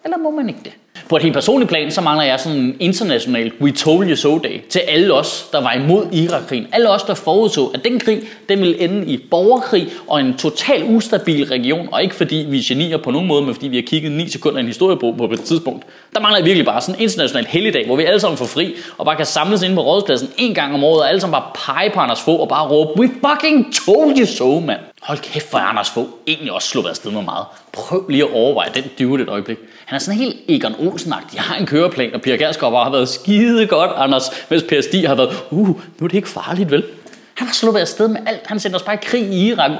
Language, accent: Danish, native